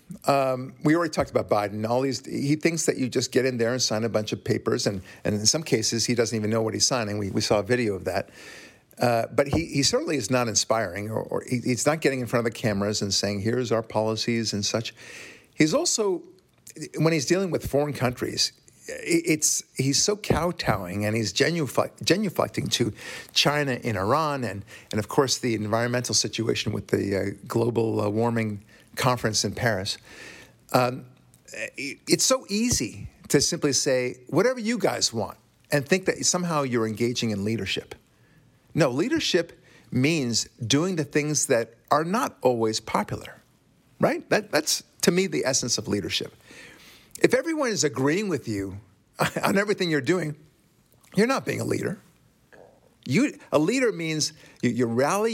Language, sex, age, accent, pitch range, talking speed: English, male, 50-69, American, 110-150 Hz, 180 wpm